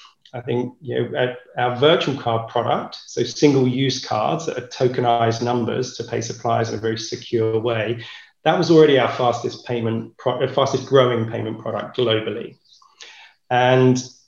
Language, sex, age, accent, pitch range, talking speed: English, male, 30-49, British, 115-140 Hz, 150 wpm